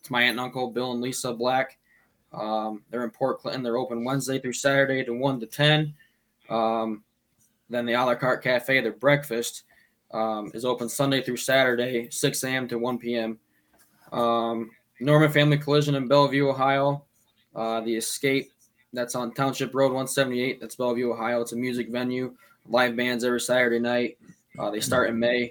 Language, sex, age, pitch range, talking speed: English, male, 10-29, 115-135 Hz, 175 wpm